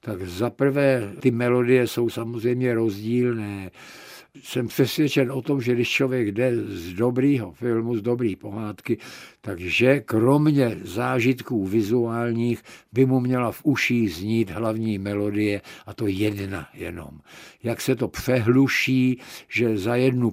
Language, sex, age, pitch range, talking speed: Czech, male, 60-79, 110-125 Hz, 130 wpm